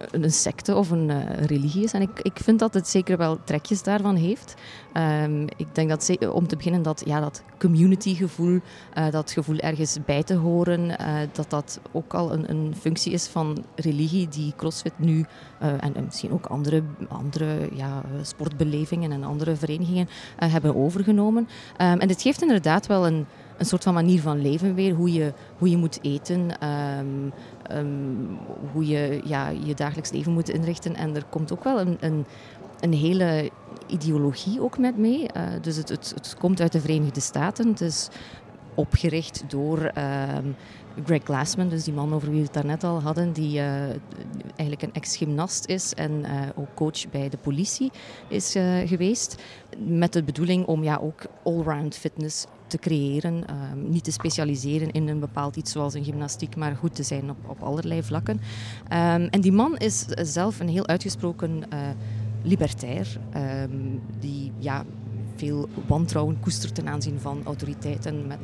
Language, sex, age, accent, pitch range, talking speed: Dutch, female, 30-49, Belgian, 145-170 Hz, 175 wpm